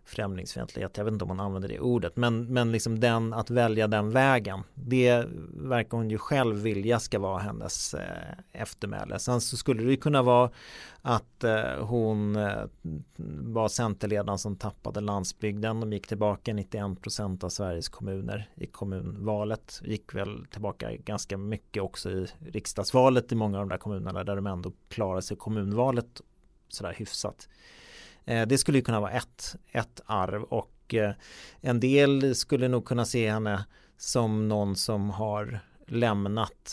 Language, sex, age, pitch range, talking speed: Swedish, male, 30-49, 100-120 Hz, 155 wpm